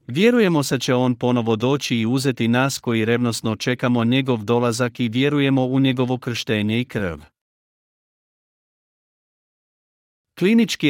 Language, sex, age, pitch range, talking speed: Croatian, male, 50-69, 110-135 Hz, 120 wpm